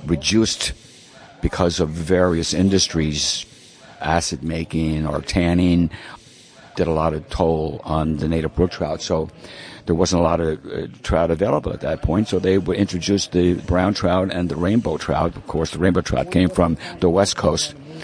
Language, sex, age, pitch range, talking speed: English, male, 60-79, 80-95 Hz, 170 wpm